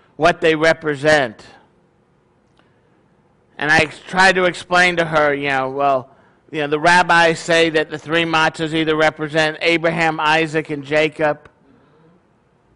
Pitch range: 150-175 Hz